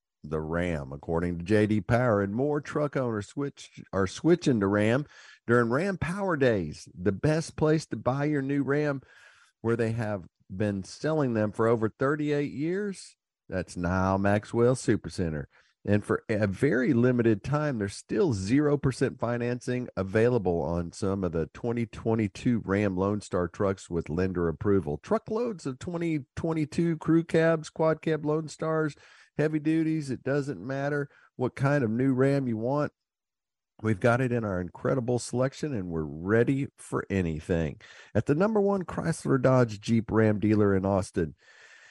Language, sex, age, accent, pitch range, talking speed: English, male, 50-69, American, 105-150 Hz, 155 wpm